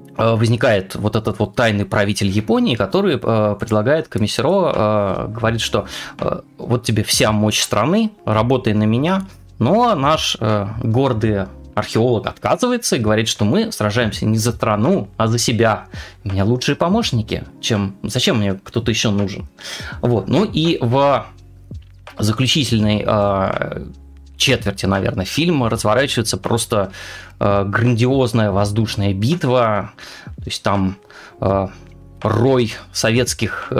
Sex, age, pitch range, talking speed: male, 20-39, 105-125 Hz, 125 wpm